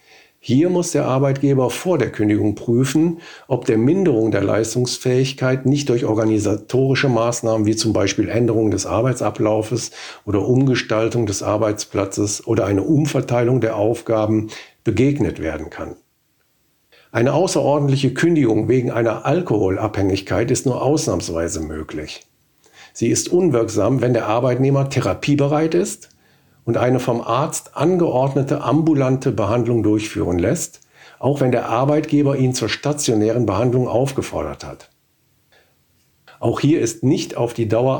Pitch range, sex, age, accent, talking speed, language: 110-140 Hz, male, 50-69, German, 125 wpm, German